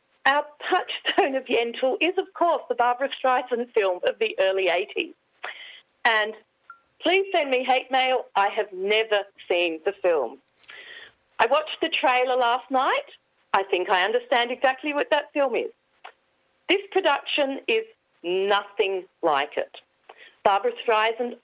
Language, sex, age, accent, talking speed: English, female, 40-59, Australian, 140 wpm